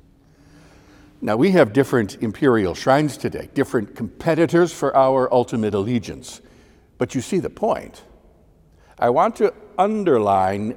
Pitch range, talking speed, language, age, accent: 110-155 Hz, 125 wpm, English, 60-79, American